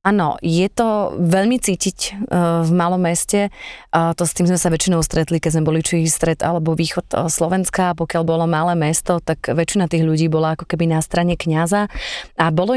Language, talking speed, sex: Slovak, 190 wpm, female